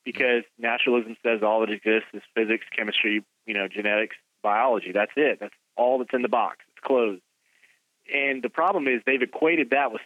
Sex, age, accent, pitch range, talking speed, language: male, 30-49, American, 115-140 Hz, 185 wpm, English